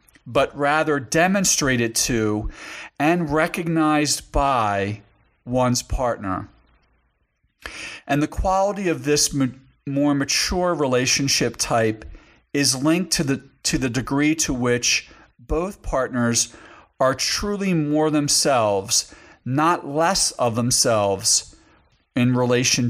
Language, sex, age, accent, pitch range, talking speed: English, male, 40-59, American, 120-150 Hz, 100 wpm